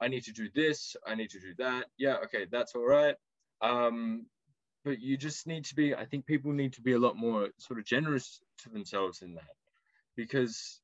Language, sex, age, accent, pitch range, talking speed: English, male, 20-39, Australian, 110-135 Hz, 215 wpm